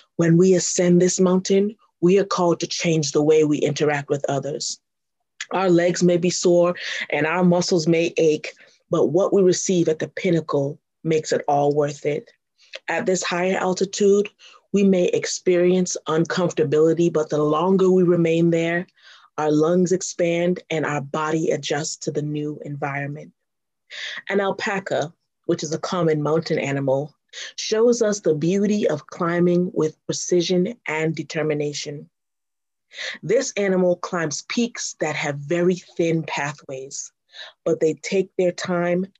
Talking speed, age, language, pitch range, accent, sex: 145 wpm, 30-49, English, 155-185 Hz, American, female